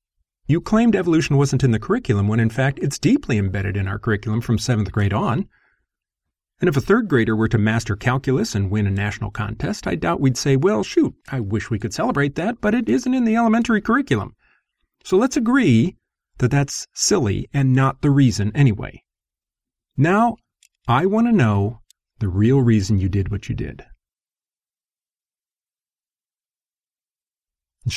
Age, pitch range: 40-59, 105-135 Hz